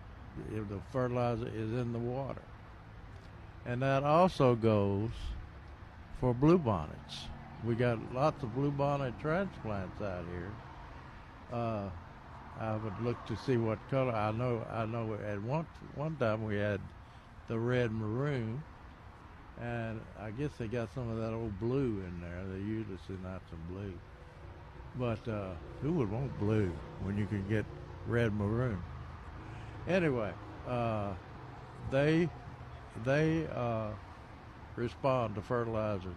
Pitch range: 95-120 Hz